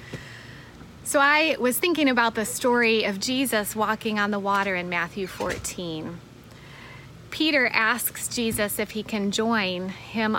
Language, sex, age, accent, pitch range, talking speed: English, female, 30-49, American, 185-240 Hz, 140 wpm